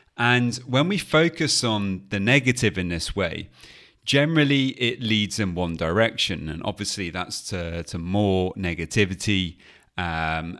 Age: 30-49